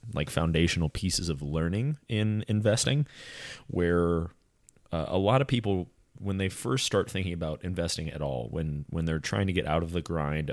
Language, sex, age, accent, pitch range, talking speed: English, male, 30-49, American, 80-105 Hz, 180 wpm